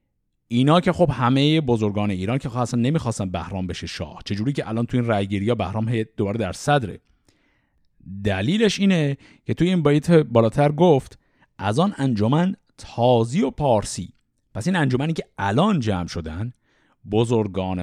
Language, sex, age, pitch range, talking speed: Persian, male, 50-69, 105-160 Hz, 155 wpm